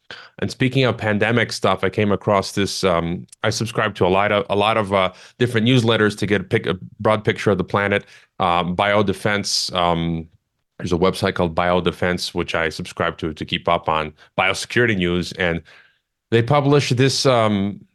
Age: 30-49